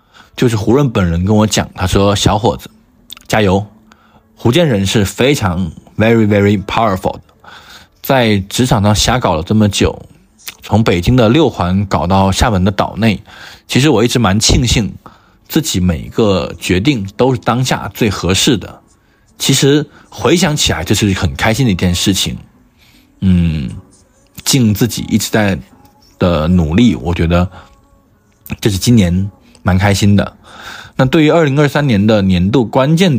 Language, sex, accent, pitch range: Chinese, male, native, 95-125 Hz